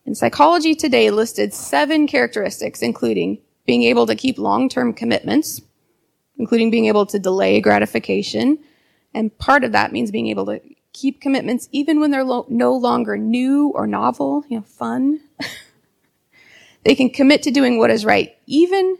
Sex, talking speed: female, 155 wpm